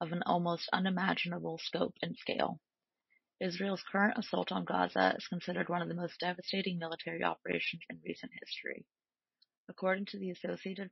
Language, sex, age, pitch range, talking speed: English, female, 30-49, 165-190 Hz, 155 wpm